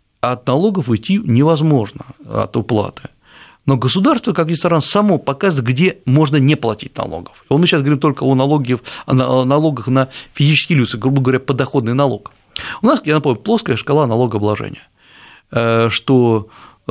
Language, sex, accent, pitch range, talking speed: Russian, male, native, 120-160 Hz, 140 wpm